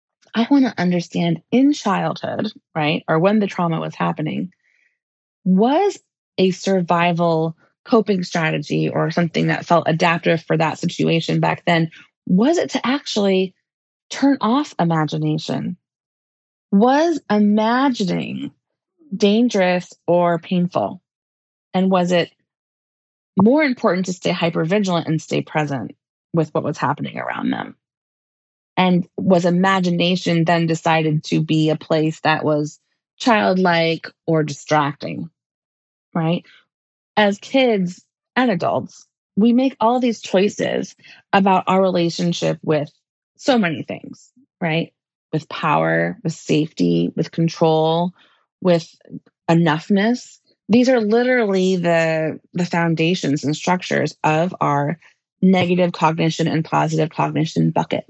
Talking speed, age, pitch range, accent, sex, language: 115 wpm, 20-39, 155-205 Hz, American, female, English